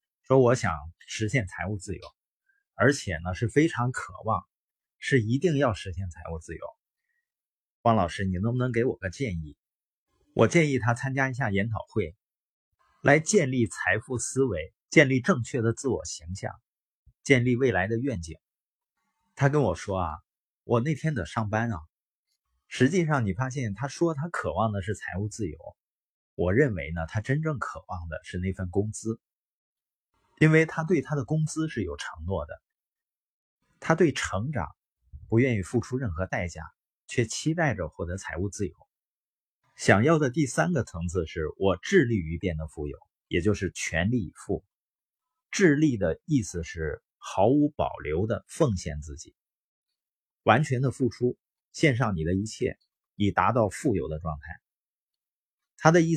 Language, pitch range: Chinese, 95-140 Hz